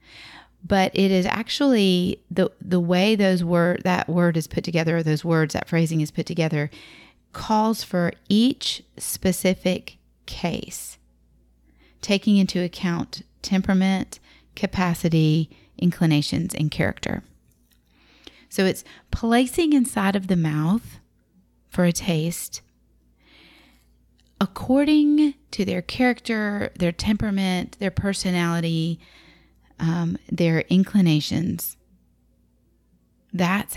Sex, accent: female, American